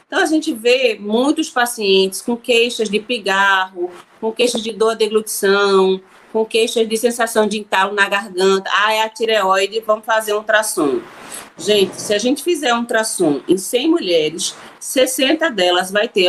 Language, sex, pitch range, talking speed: Portuguese, female, 195-255 Hz, 170 wpm